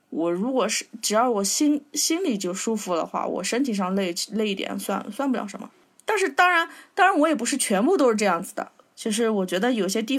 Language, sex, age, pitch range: Chinese, female, 20-39, 195-275 Hz